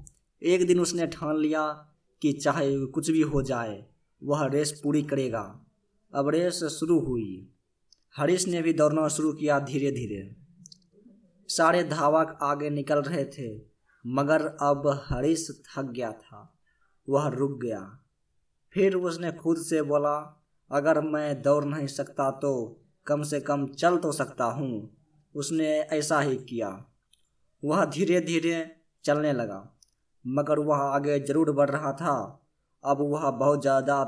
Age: 20-39